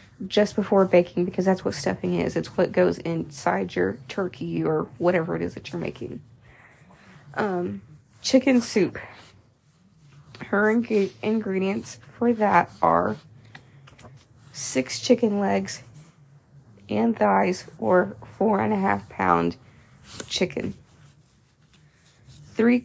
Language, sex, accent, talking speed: English, female, American, 115 wpm